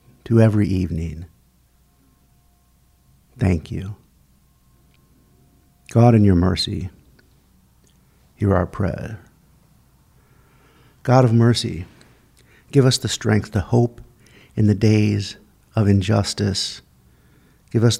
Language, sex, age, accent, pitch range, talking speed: English, male, 50-69, American, 95-115 Hz, 95 wpm